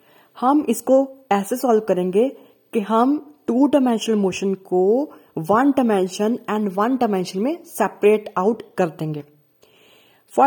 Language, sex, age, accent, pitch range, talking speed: Hindi, female, 30-49, native, 200-260 Hz, 125 wpm